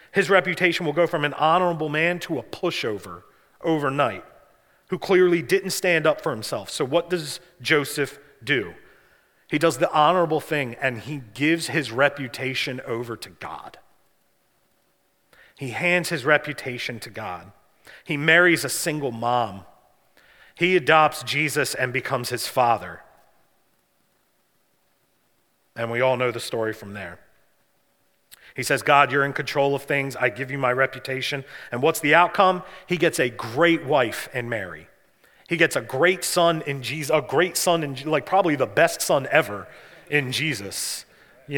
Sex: male